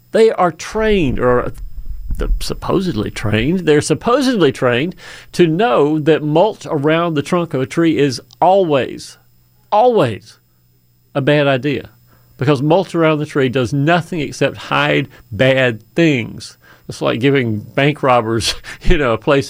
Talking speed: 140 wpm